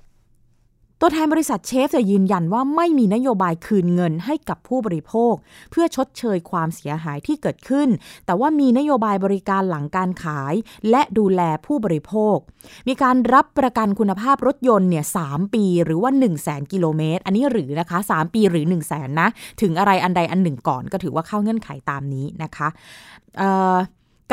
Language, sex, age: Thai, female, 20-39